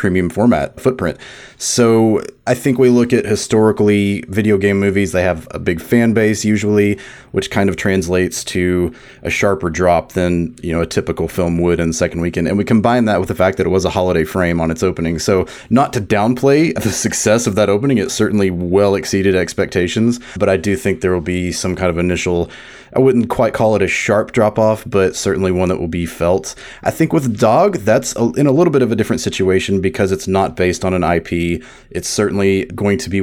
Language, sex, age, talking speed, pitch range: English, male, 30-49, 215 wpm, 90-110 Hz